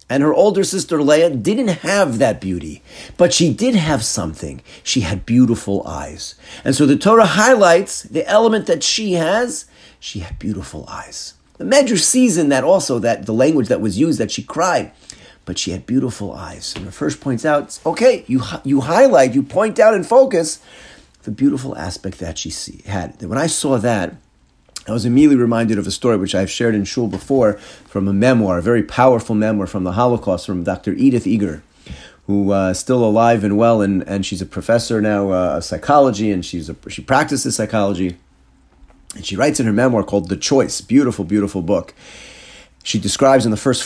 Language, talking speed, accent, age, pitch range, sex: English, 195 wpm, American, 40-59, 95-135 Hz, male